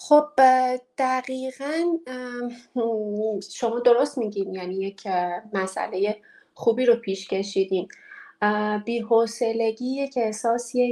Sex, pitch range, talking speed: female, 190-240 Hz, 80 wpm